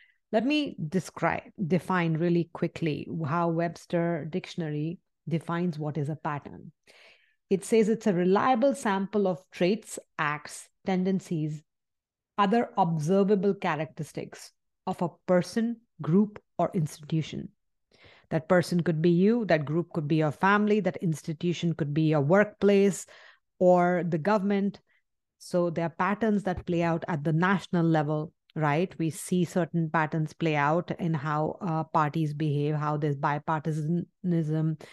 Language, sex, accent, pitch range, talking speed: English, female, Indian, 160-195 Hz, 135 wpm